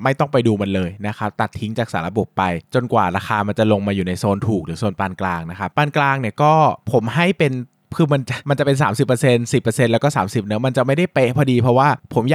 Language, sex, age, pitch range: Thai, male, 20-39, 105-145 Hz